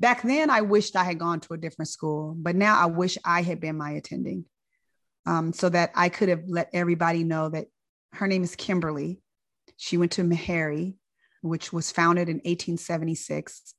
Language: English